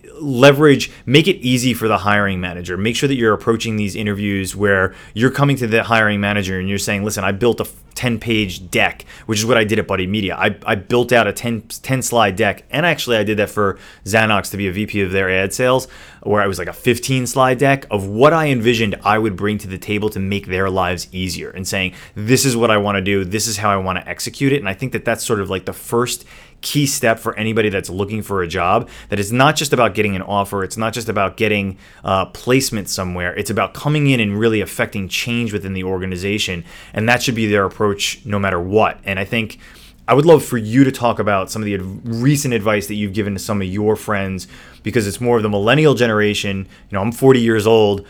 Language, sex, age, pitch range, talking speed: English, male, 30-49, 100-120 Hz, 245 wpm